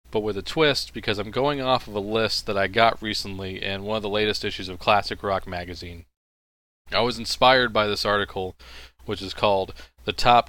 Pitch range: 90-115 Hz